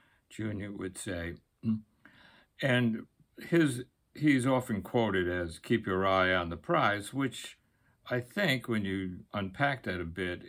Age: 60-79